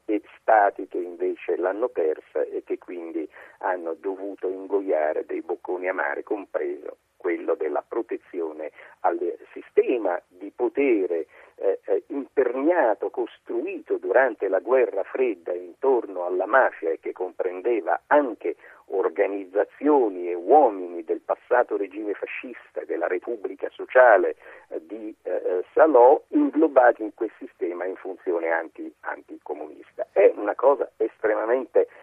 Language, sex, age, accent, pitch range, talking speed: Italian, male, 50-69, native, 345-455 Hz, 110 wpm